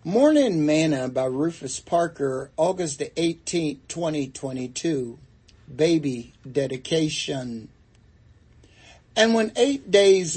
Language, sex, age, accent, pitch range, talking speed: English, male, 60-79, American, 130-165 Hz, 80 wpm